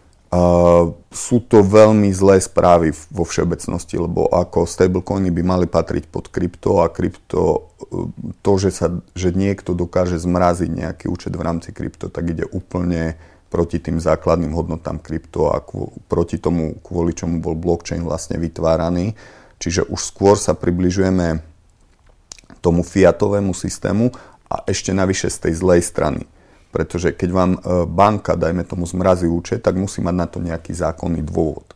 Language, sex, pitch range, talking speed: Czech, male, 85-90 Hz, 150 wpm